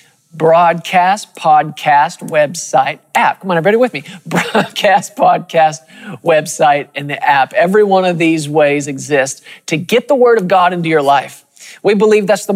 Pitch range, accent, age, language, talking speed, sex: 150-190 Hz, American, 40-59, English, 165 wpm, male